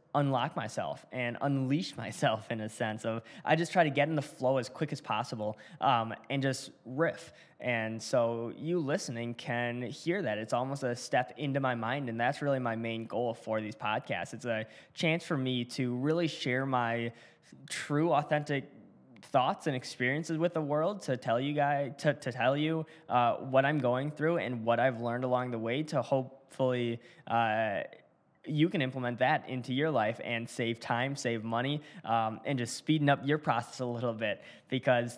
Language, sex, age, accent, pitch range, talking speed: English, male, 10-29, American, 115-145 Hz, 190 wpm